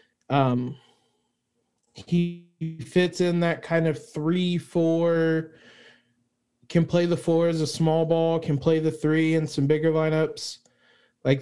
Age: 20-39